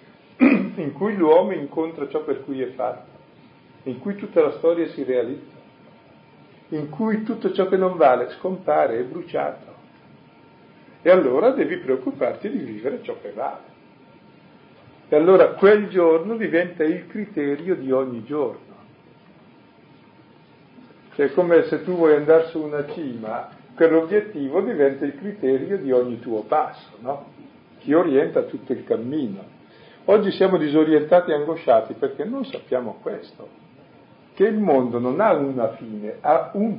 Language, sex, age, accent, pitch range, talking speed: Italian, male, 50-69, native, 135-200 Hz, 140 wpm